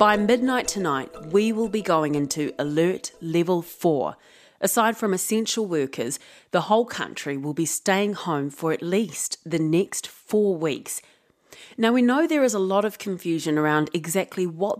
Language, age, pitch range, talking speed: English, 30-49, 160-210 Hz, 165 wpm